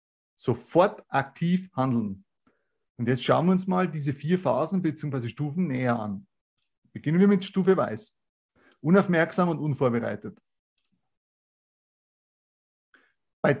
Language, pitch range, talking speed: German, 130-180 Hz, 110 wpm